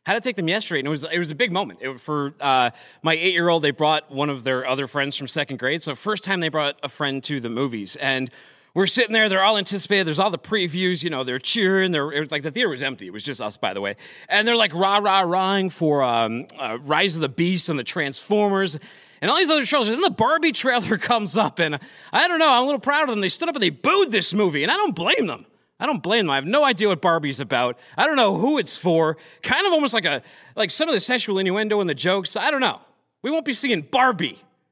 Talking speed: 270 wpm